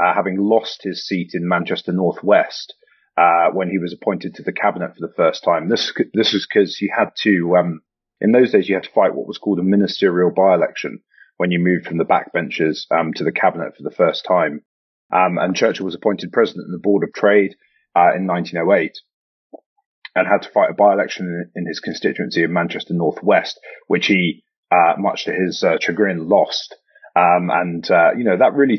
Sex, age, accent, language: male, 30-49, British, English